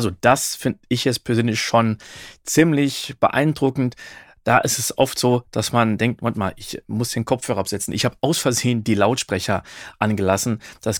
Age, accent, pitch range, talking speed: 40-59, German, 105-135 Hz, 175 wpm